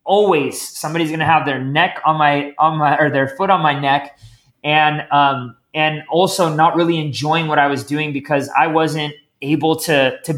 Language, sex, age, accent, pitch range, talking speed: English, male, 20-39, American, 145-170 Hz, 195 wpm